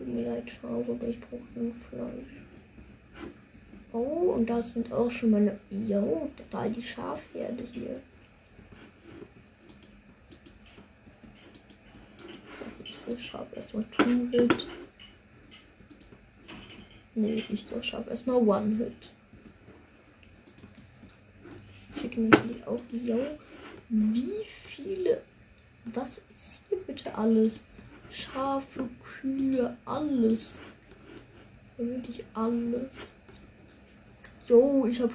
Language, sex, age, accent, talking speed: German, female, 20-39, German, 90 wpm